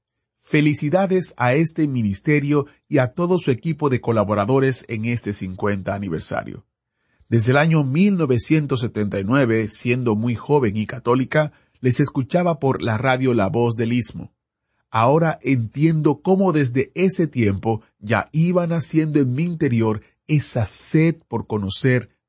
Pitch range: 110-150 Hz